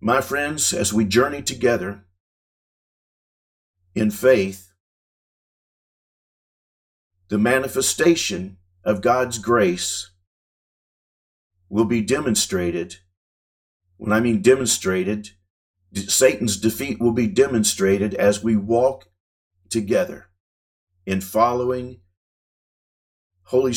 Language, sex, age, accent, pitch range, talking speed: English, male, 50-69, American, 90-110 Hz, 80 wpm